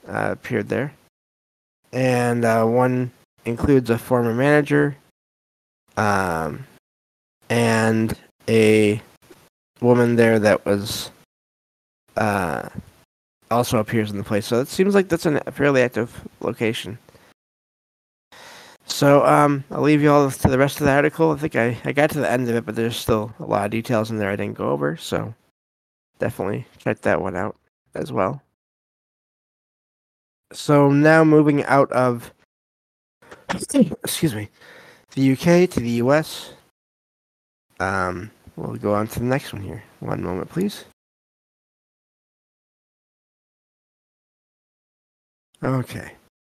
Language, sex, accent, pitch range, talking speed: English, male, American, 110-140 Hz, 130 wpm